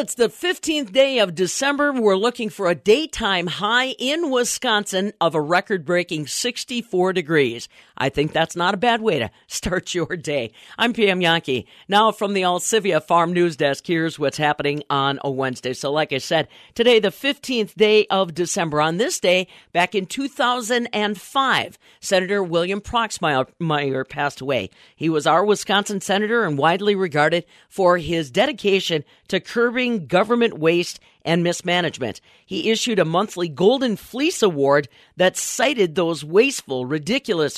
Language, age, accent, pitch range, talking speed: English, 50-69, American, 160-225 Hz, 155 wpm